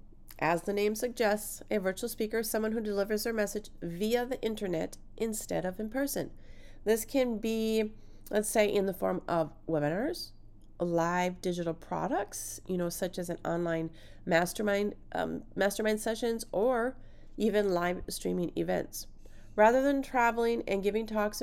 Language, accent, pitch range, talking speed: English, American, 180-240 Hz, 150 wpm